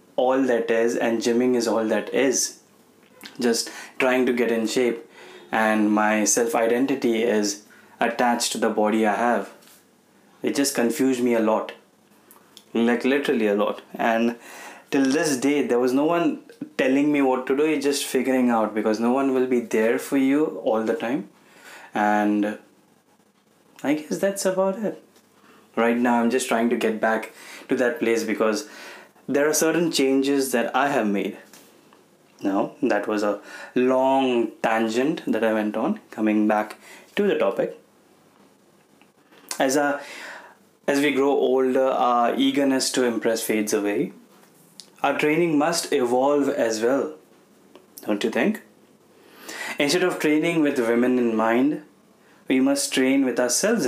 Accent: native